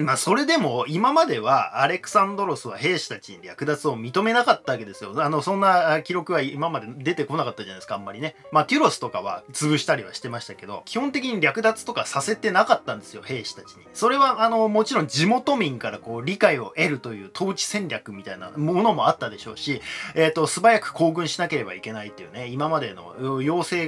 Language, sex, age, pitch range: Japanese, male, 20-39, 140-215 Hz